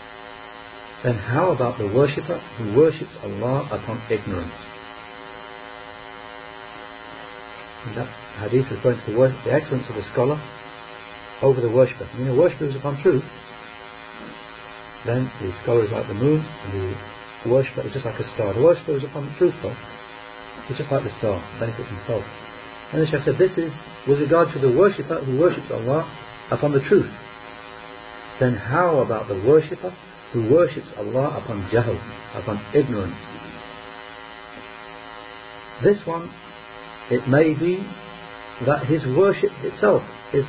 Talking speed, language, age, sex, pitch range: 150 wpm, English, 40-59, male, 105-135 Hz